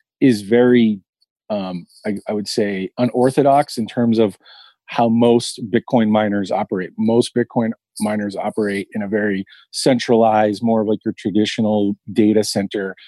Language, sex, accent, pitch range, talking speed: English, male, American, 105-120 Hz, 140 wpm